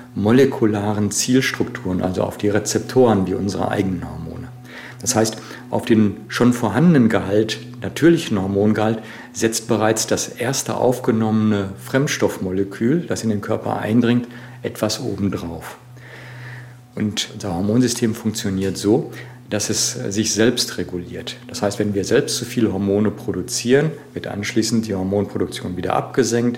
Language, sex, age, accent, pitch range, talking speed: German, male, 50-69, German, 100-125 Hz, 130 wpm